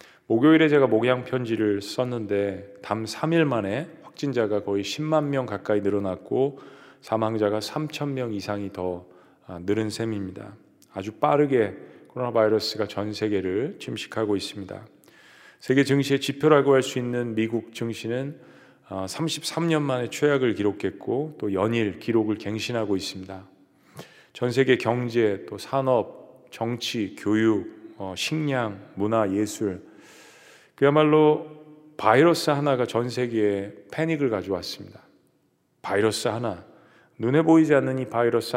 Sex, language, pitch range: male, Korean, 105-140 Hz